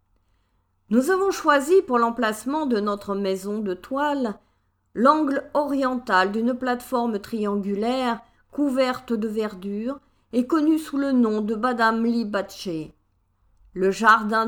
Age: 50-69